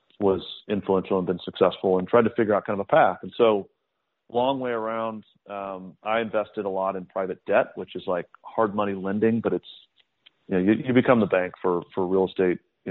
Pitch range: 95-110 Hz